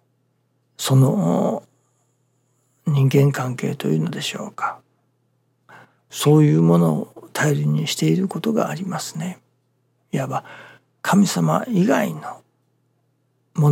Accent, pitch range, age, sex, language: native, 125-165 Hz, 60-79, male, Japanese